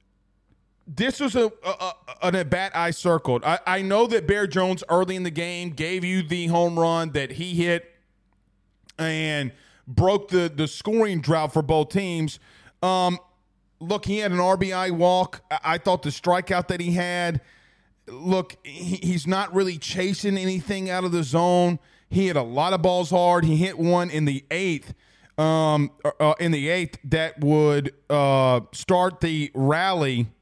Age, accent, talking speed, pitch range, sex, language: 30-49, American, 170 wpm, 145-185 Hz, male, English